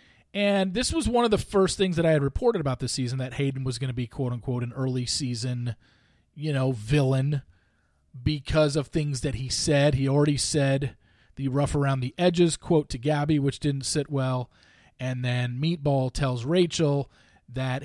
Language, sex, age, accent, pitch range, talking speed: English, male, 40-59, American, 110-145 Hz, 190 wpm